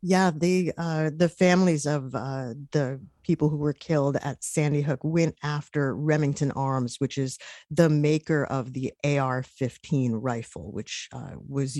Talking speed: 150 wpm